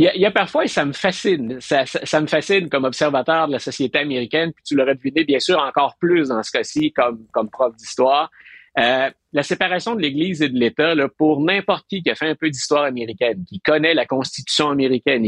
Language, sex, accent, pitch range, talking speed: French, male, Canadian, 135-190 Hz, 225 wpm